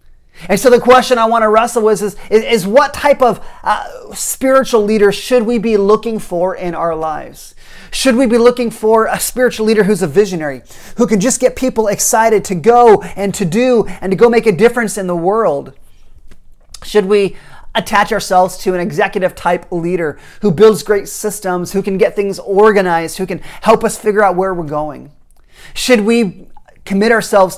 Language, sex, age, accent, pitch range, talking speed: English, male, 30-49, American, 175-220 Hz, 190 wpm